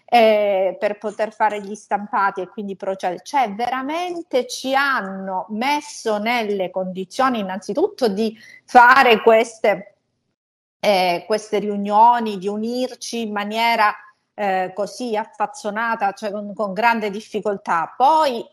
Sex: female